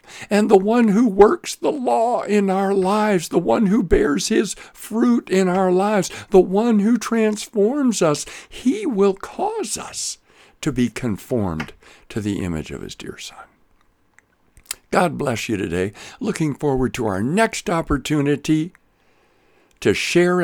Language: English